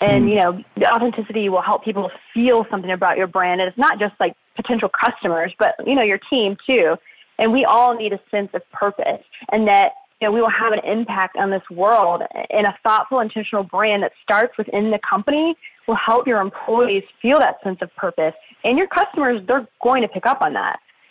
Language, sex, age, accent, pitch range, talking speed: English, female, 20-39, American, 195-235 Hz, 215 wpm